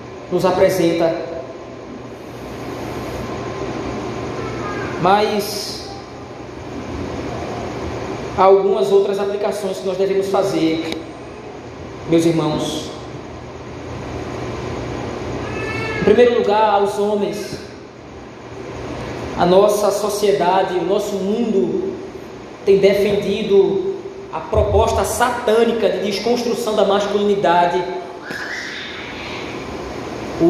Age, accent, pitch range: 20-39, Brazilian, 200-255 Hz